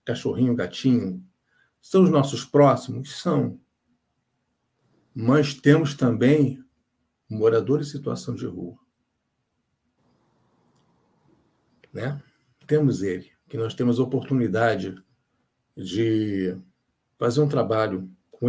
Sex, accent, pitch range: male, Brazilian, 115-145 Hz